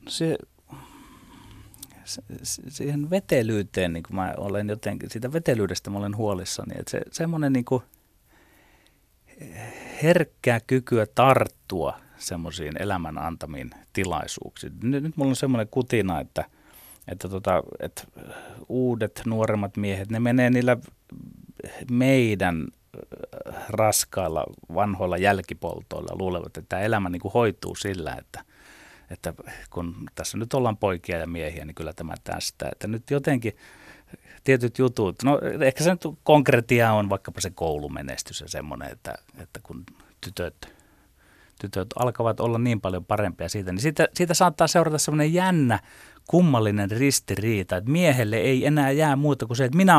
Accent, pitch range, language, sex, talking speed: native, 95-135 Hz, Finnish, male, 135 wpm